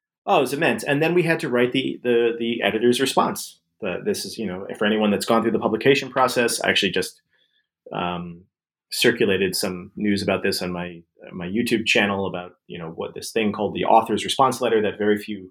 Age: 30-49